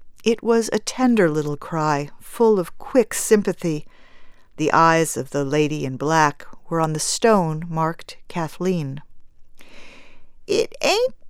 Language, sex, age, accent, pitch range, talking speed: English, female, 50-69, American, 160-230 Hz, 135 wpm